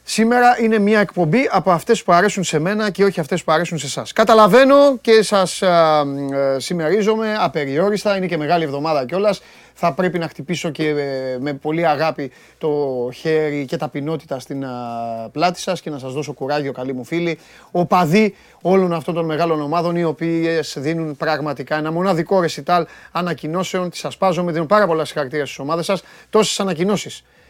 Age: 30-49